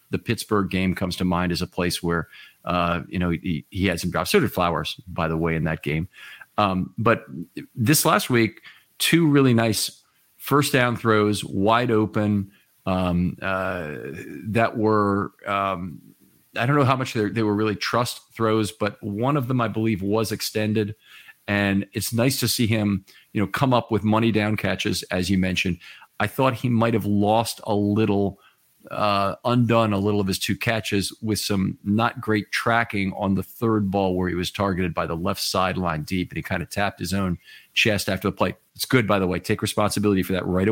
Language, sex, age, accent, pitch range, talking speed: English, male, 40-59, American, 90-110 Hz, 200 wpm